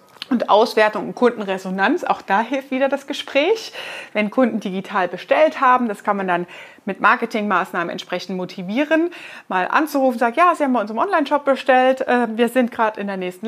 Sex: female